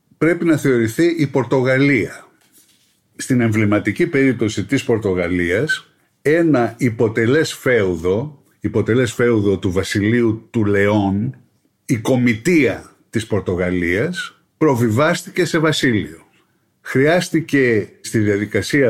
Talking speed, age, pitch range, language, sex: 90 wpm, 50-69, 110-150 Hz, Greek, male